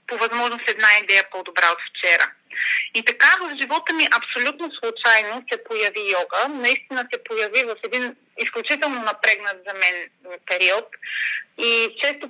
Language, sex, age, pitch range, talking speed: Bulgarian, female, 30-49, 205-280 Hz, 140 wpm